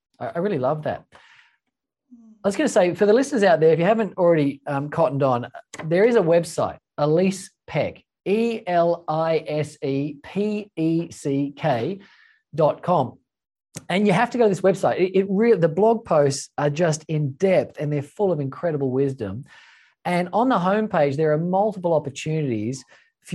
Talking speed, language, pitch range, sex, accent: 160 wpm, English, 135-185 Hz, male, Australian